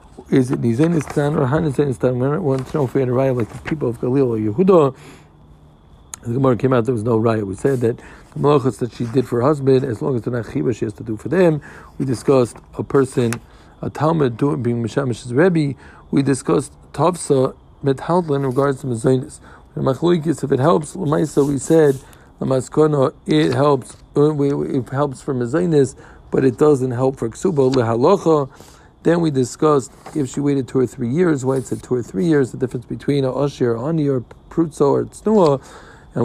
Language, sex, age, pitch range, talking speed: English, male, 50-69, 125-150 Hz, 205 wpm